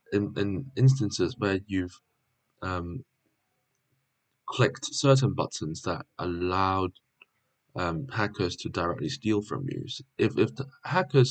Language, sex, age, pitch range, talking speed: English, male, 20-39, 100-135 Hz, 115 wpm